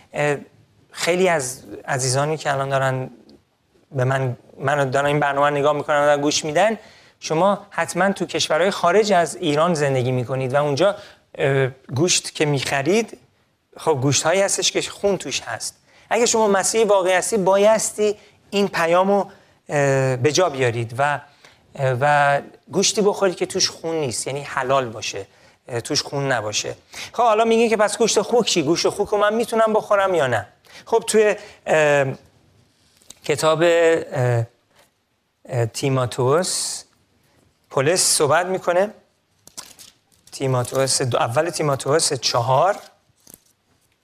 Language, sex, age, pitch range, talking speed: Persian, male, 40-59, 135-195 Hz, 125 wpm